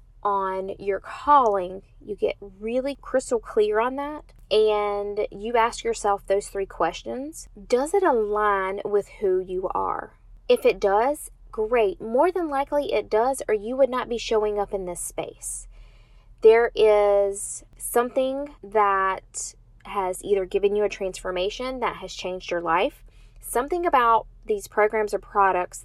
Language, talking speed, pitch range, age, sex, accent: English, 150 wpm, 195-255 Hz, 20-39, female, American